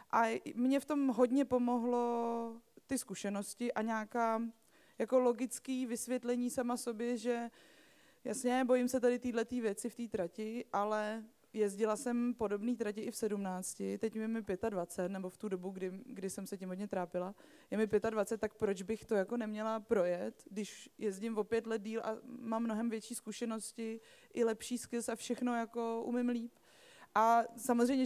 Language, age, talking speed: Czech, 20-39, 170 wpm